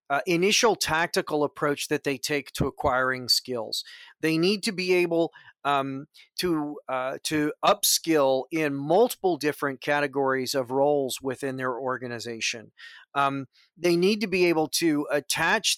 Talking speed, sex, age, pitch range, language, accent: 140 wpm, male, 40-59, 140-165 Hz, English, American